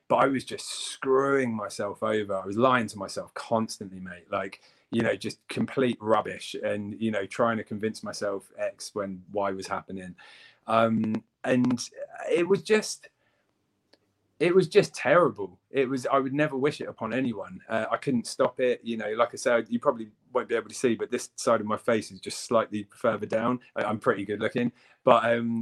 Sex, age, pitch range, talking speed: male, 30-49, 110-135 Hz, 195 wpm